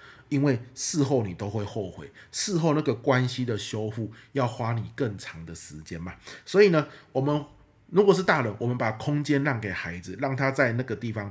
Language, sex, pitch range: Chinese, male, 105-135 Hz